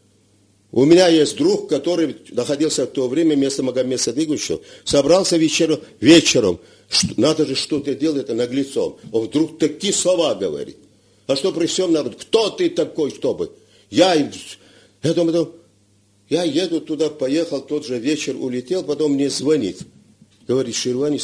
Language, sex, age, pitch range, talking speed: Russian, male, 50-69, 125-175 Hz, 145 wpm